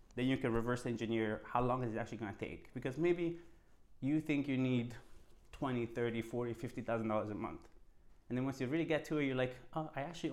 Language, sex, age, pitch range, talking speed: English, male, 30-49, 120-145 Hz, 220 wpm